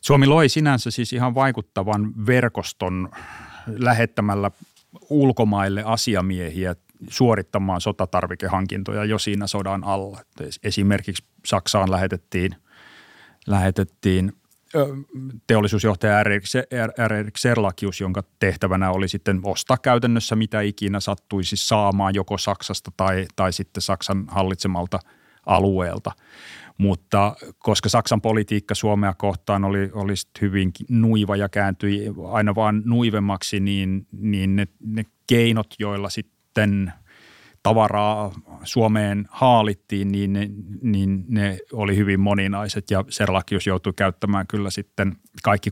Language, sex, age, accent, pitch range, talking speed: Finnish, male, 30-49, native, 95-105 Hz, 110 wpm